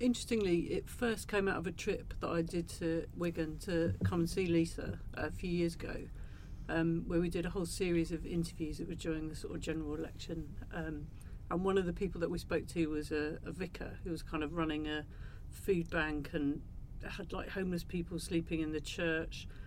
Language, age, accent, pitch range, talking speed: English, 50-69, British, 155-170 Hz, 215 wpm